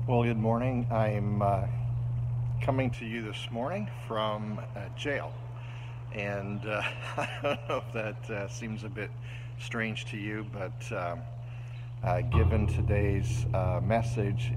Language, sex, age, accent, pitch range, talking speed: English, male, 50-69, American, 110-120 Hz, 140 wpm